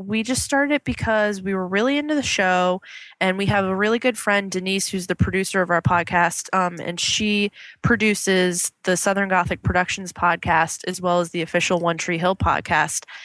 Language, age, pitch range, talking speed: English, 20-39, 175-195 Hz, 195 wpm